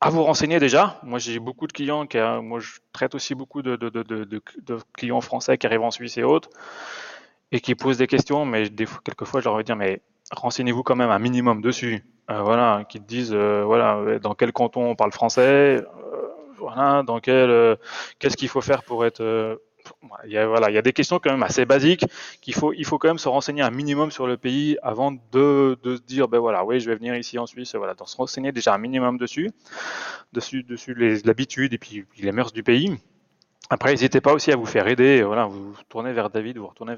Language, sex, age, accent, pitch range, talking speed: French, male, 20-39, French, 115-140 Hz, 230 wpm